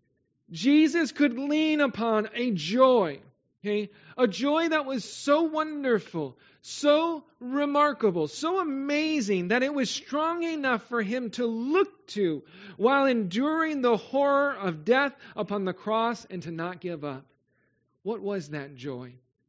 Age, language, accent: 40-59, English, American